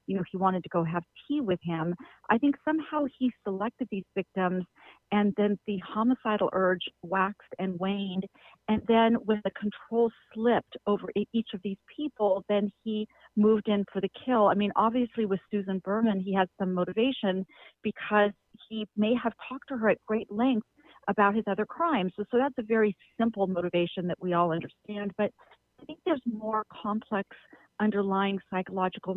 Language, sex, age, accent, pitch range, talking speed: English, female, 40-59, American, 190-230 Hz, 175 wpm